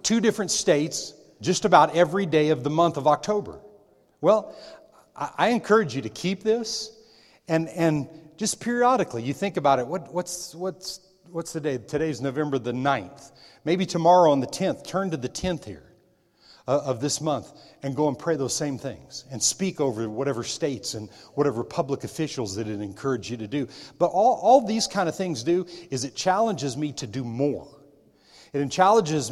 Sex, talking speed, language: male, 185 wpm, English